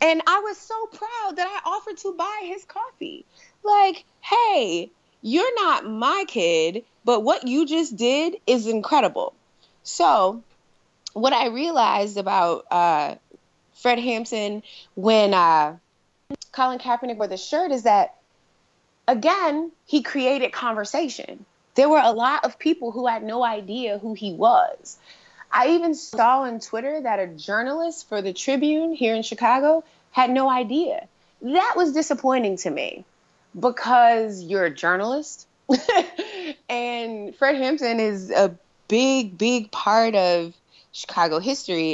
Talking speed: 135 wpm